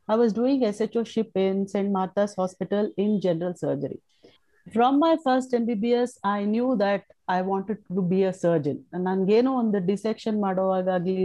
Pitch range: 185-245 Hz